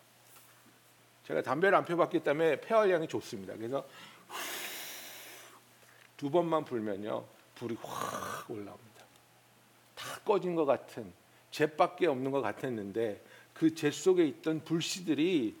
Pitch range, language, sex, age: 115-160 Hz, Korean, male, 50-69